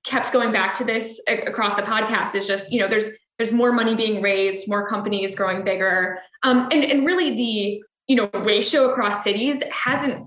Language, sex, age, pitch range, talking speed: English, female, 10-29, 200-250 Hz, 195 wpm